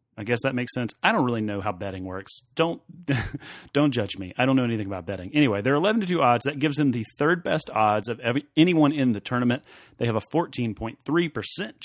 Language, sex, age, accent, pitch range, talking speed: English, male, 30-49, American, 120-155 Hz, 225 wpm